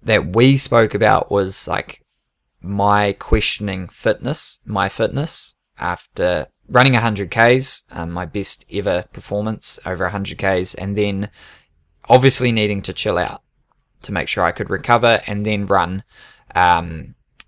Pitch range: 95-120 Hz